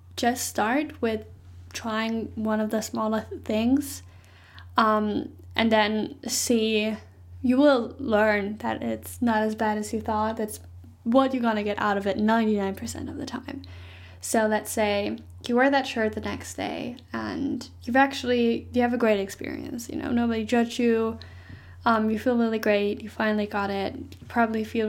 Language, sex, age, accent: English, female, 10-29, American